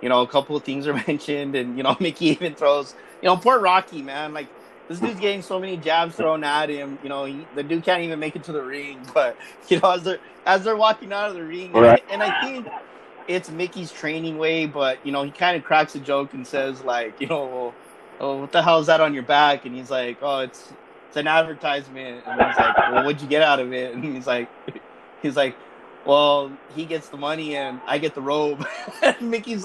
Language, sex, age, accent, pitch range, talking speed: English, male, 20-39, American, 140-180 Hz, 240 wpm